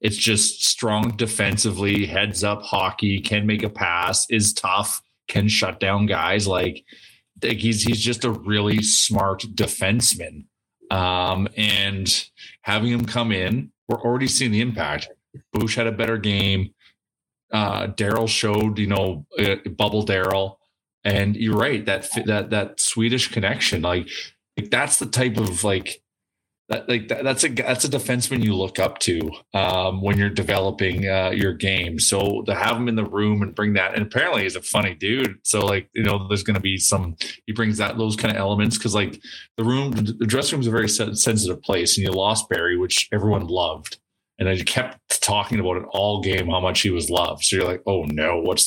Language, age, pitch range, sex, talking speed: English, 20-39, 95-115 Hz, male, 190 wpm